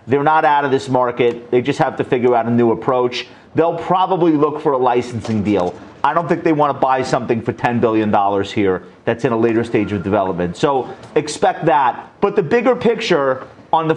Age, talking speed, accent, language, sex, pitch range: 30-49, 215 wpm, American, English, male, 125-175 Hz